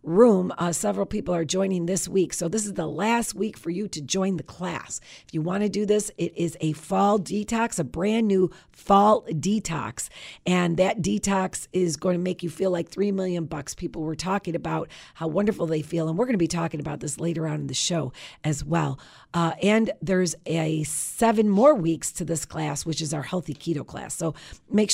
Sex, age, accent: female, 40-59, American